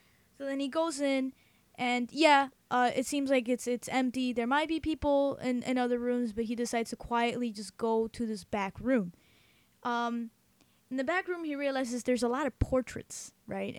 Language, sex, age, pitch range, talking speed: English, female, 20-39, 215-260 Hz, 200 wpm